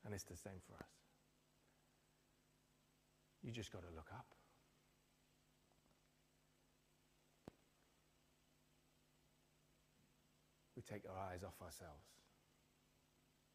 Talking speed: 80 wpm